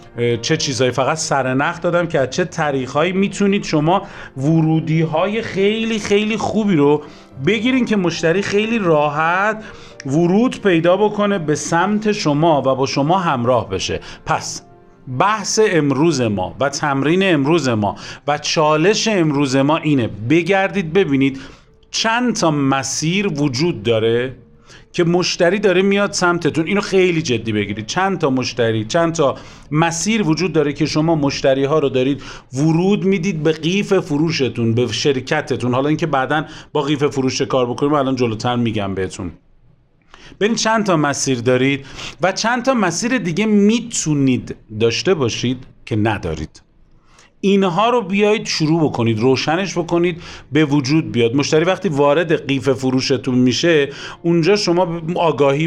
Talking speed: 140 wpm